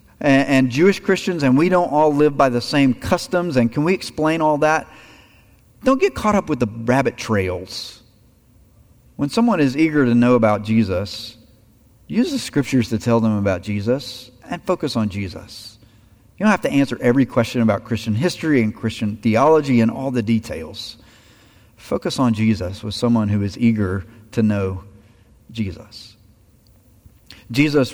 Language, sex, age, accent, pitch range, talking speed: English, male, 40-59, American, 105-130 Hz, 160 wpm